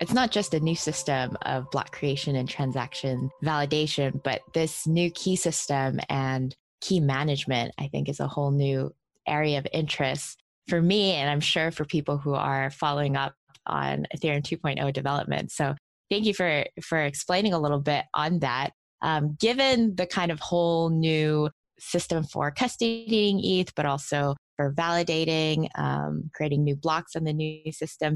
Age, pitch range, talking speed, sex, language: 20-39, 140-170 Hz, 165 wpm, female, English